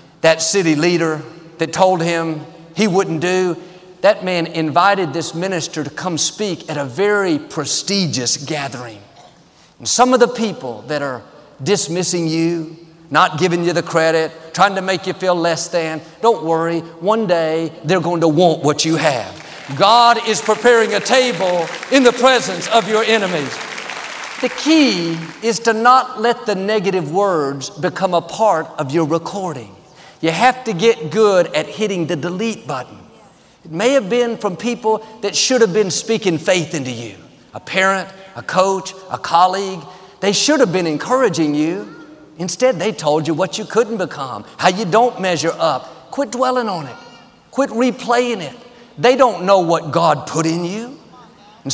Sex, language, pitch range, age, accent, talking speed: male, English, 165-225 Hz, 50-69, American, 170 wpm